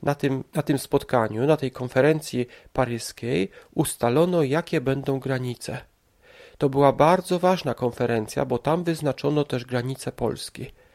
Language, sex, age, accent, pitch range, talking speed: Polish, male, 40-59, native, 125-165 Hz, 125 wpm